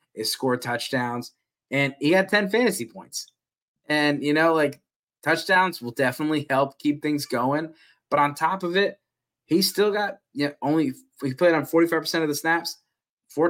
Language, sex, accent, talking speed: English, male, American, 185 wpm